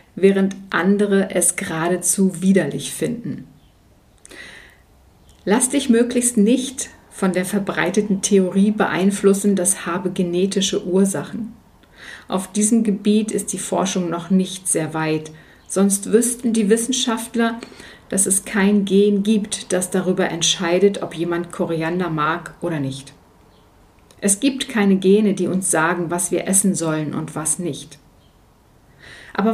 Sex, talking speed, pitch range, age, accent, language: female, 125 wpm, 175-220 Hz, 50-69, German, German